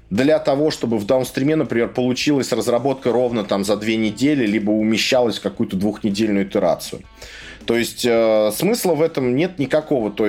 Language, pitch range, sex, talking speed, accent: Russian, 110-130 Hz, male, 155 wpm, native